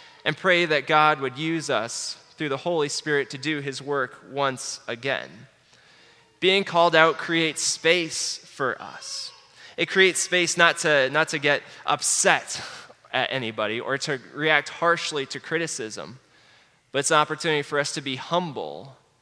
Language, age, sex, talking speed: English, 20-39, male, 155 wpm